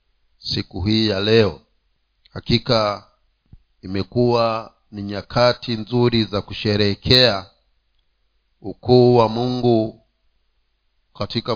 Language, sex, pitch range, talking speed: Swahili, male, 105-130 Hz, 80 wpm